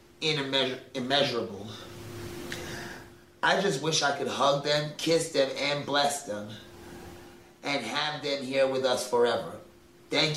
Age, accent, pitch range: 30-49, American, 115-135 Hz